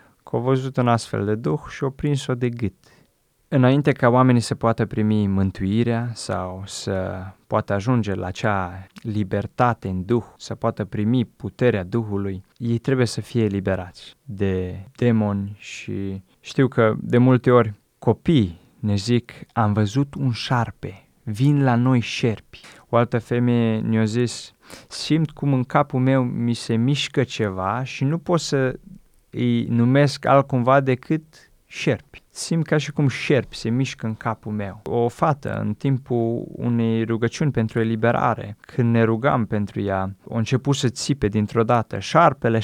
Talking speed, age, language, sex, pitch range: 155 wpm, 20-39, Romanian, male, 105-130 Hz